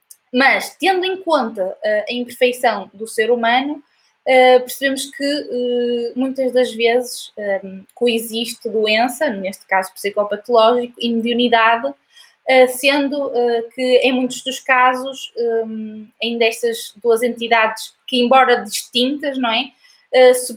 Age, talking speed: 20-39, 130 wpm